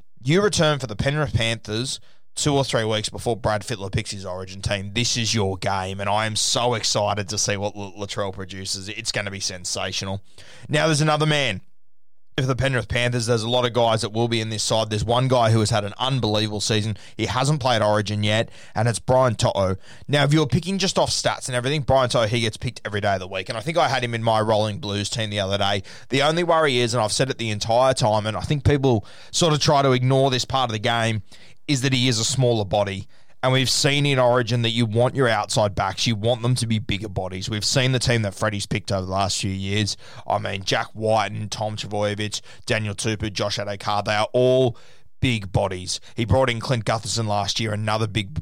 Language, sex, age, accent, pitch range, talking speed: English, male, 20-39, Australian, 105-125 Hz, 240 wpm